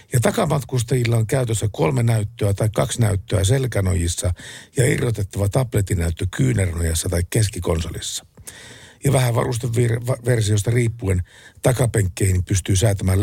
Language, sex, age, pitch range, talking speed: Finnish, male, 50-69, 95-130 Hz, 110 wpm